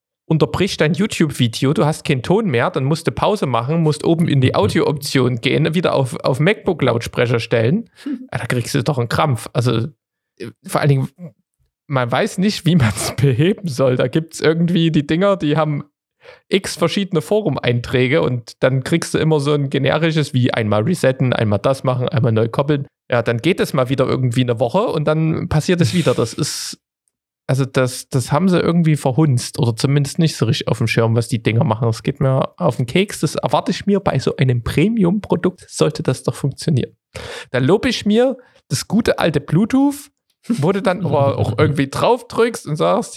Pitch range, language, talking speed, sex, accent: 130-170 Hz, German, 195 wpm, male, German